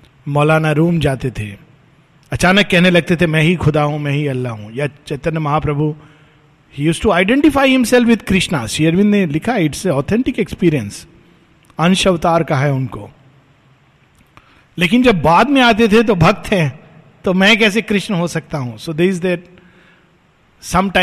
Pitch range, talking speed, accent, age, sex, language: 140-185 Hz, 165 wpm, native, 50-69, male, Hindi